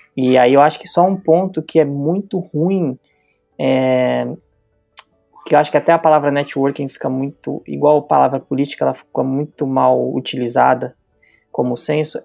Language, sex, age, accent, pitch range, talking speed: Portuguese, male, 20-39, Brazilian, 130-160 Hz, 165 wpm